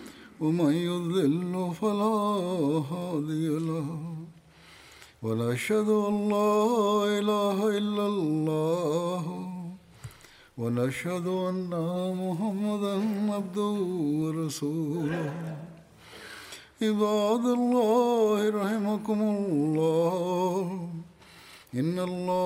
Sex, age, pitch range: male, 60-79, 160-205 Hz